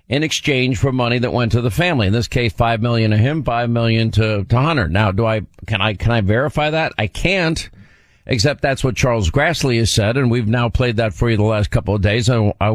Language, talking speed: English, 250 wpm